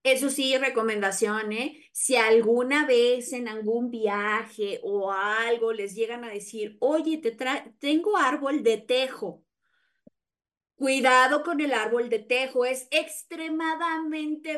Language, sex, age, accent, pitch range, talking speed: Spanish, female, 20-39, Mexican, 215-290 Hz, 130 wpm